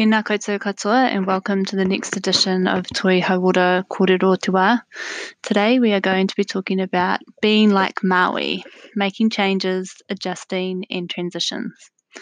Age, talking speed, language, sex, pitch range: 20-39, 135 wpm, English, female, 185-210 Hz